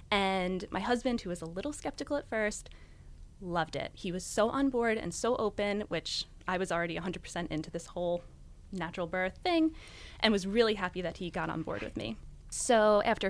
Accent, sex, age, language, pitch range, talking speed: American, female, 20-39, English, 170-220 Hz, 200 wpm